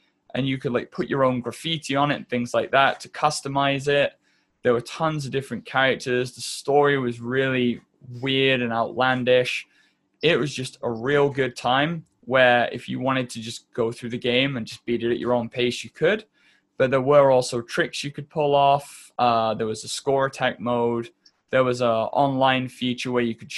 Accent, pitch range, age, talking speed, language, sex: British, 120-135 Hz, 20-39, 205 wpm, English, male